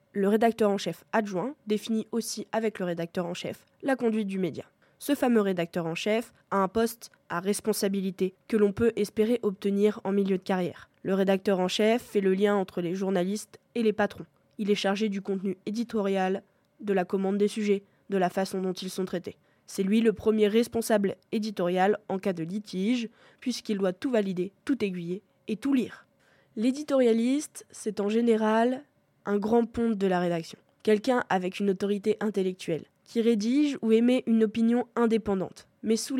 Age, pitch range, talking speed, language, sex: 20-39, 190-225 Hz, 180 wpm, French, female